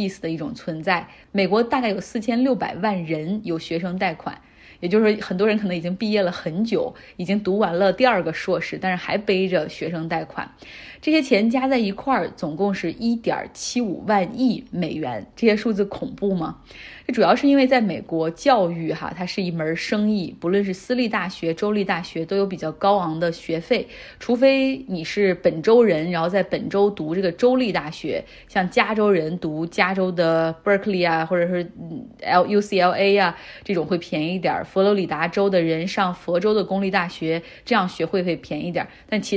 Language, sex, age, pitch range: Chinese, female, 20-39, 175-220 Hz